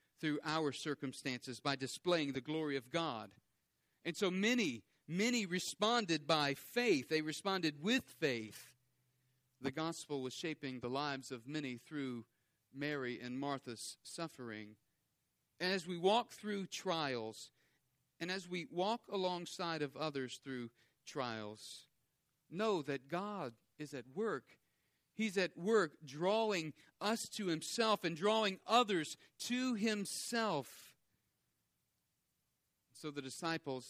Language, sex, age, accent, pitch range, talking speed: English, male, 40-59, American, 135-180 Hz, 120 wpm